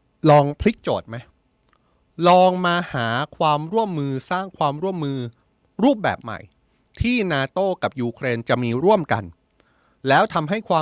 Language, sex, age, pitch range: Thai, male, 20-39, 120-170 Hz